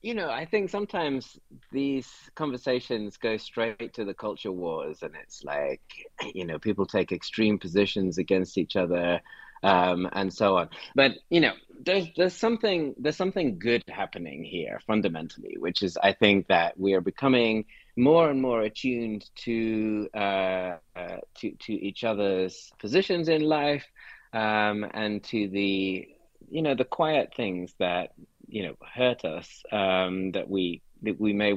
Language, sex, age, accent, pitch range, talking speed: English, male, 30-49, British, 95-130 Hz, 160 wpm